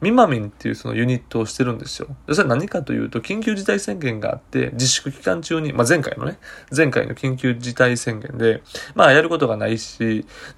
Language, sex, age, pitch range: Japanese, male, 20-39, 115-160 Hz